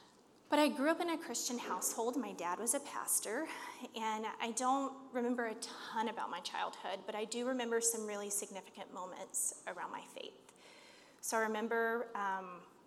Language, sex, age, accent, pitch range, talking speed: English, female, 30-49, American, 200-270 Hz, 175 wpm